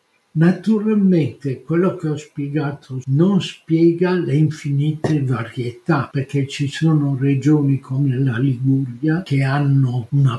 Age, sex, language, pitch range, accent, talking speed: 60-79, male, Italian, 130-165 Hz, native, 115 wpm